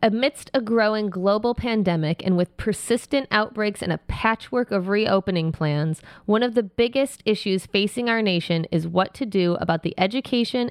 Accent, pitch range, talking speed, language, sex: American, 180-220 Hz, 170 wpm, English, female